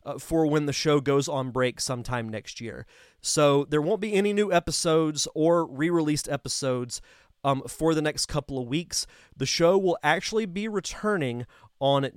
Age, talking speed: 30-49, 170 wpm